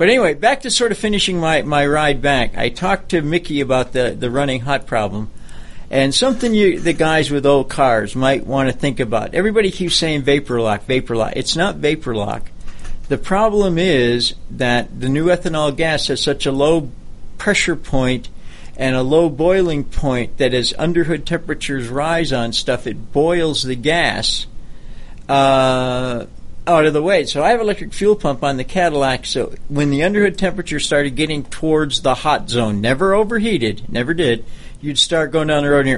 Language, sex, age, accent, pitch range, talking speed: English, male, 60-79, American, 130-165 Hz, 190 wpm